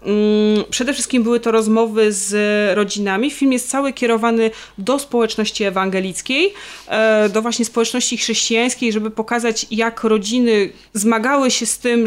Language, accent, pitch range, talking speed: Polish, native, 195-225 Hz, 130 wpm